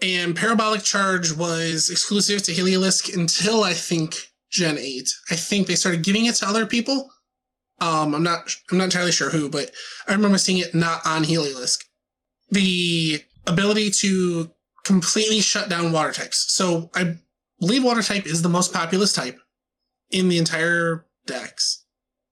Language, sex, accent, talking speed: English, male, American, 160 wpm